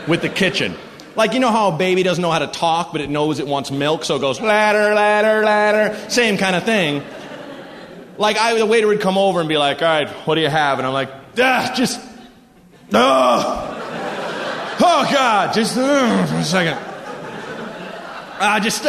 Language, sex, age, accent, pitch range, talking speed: English, male, 30-49, American, 195-255 Hz, 195 wpm